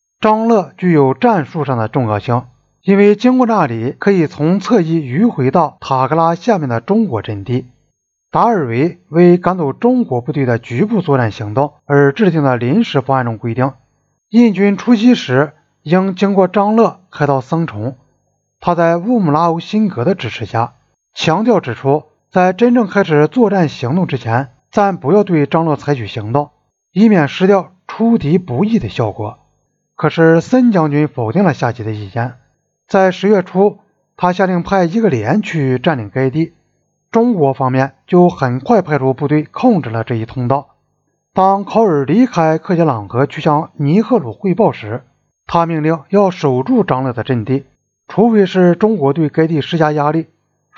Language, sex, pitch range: Chinese, male, 135-195 Hz